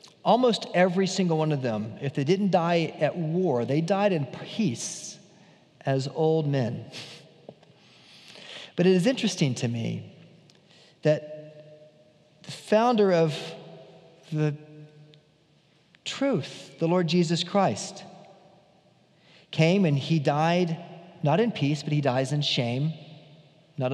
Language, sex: English, male